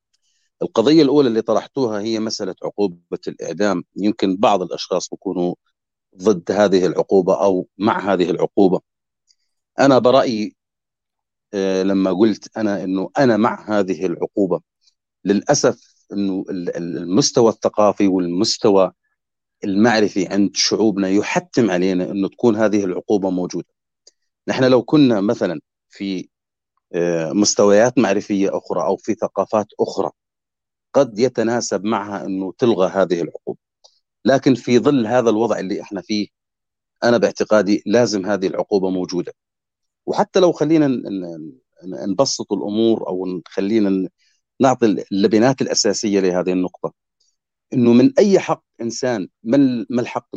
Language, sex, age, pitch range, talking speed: Arabic, male, 30-49, 95-120 Hz, 115 wpm